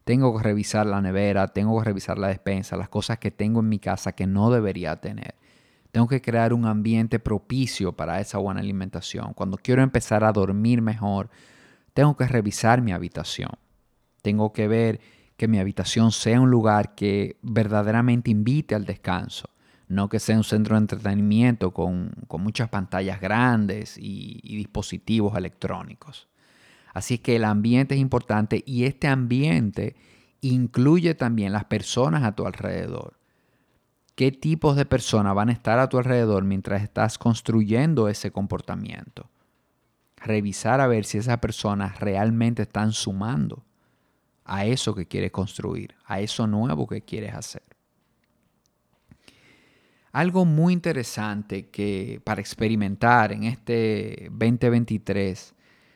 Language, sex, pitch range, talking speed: Spanish, male, 100-120 Hz, 140 wpm